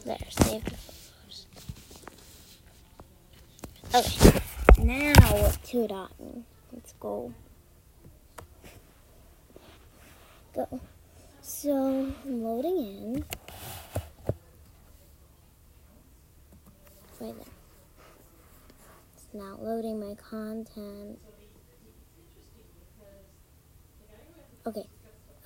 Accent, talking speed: American, 55 wpm